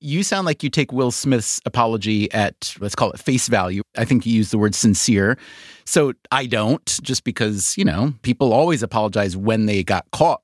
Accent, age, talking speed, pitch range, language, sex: American, 30-49, 200 wpm, 110-155 Hz, English, male